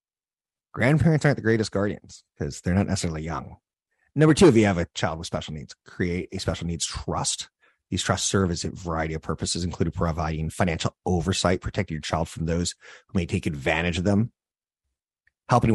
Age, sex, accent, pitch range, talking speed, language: 30-49, male, American, 80-100 Hz, 185 wpm, English